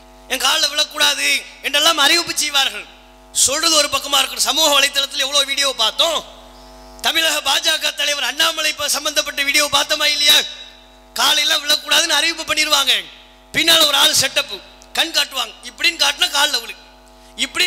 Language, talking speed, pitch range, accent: English, 90 wpm, 280-335 Hz, Indian